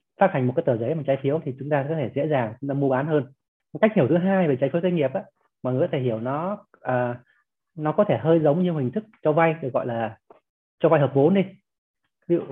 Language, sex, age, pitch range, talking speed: Vietnamese, male, 20-39, 125-155 Hz, 280 wpm